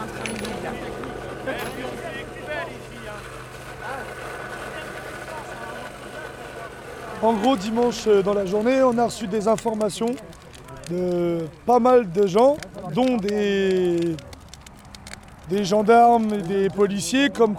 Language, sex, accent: French, male, French